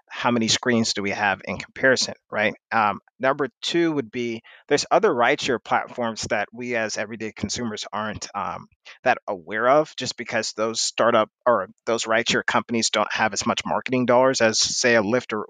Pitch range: 105-120 Hz